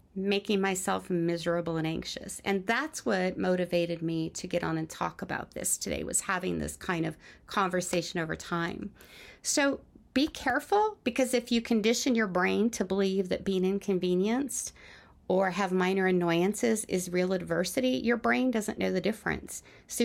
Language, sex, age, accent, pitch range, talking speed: English, female, 40-59, American, 180-225 Hz, 160 wpm